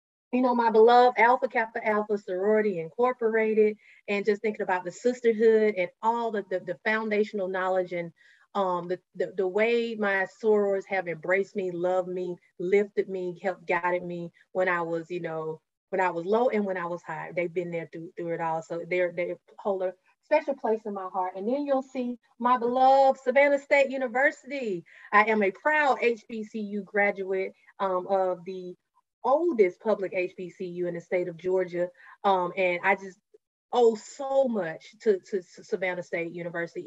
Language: English